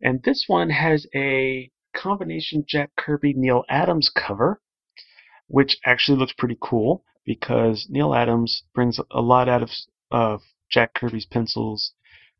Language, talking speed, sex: English, 130 wpm, male